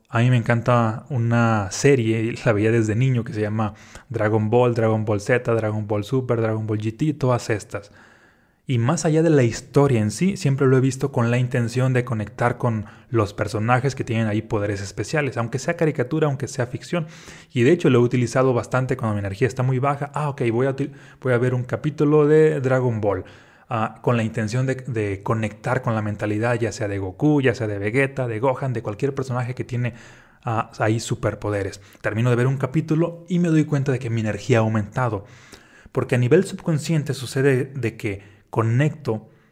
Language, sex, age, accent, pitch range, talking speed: Spanish, male, 30-49, Mexican, 110-135 Hz, 200 wpm